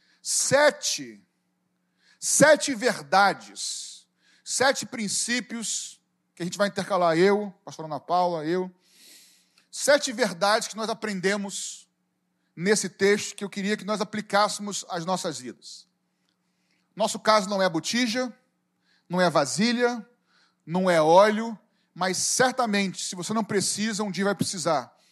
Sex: male